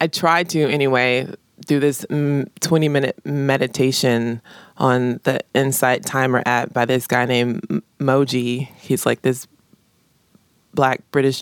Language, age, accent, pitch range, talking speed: English, 20-39, American, 120-150 Hz, 120 wpm